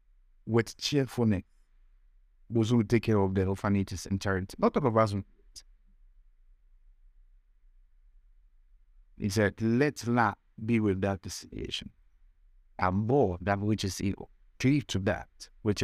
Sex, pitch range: male, 85-110 Hz